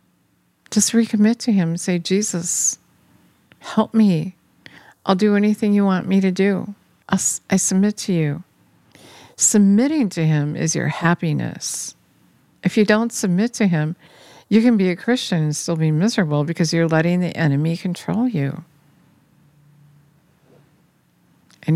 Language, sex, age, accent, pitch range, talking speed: English, female, 50-69, American, 155-200 Hz, 145 wpm